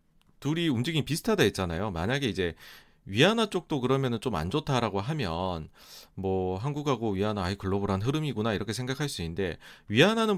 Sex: male